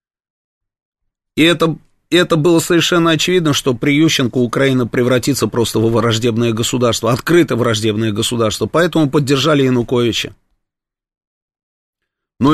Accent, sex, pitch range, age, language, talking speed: native, male, 110-135 Hz, 30-49, Russian, 105 wpm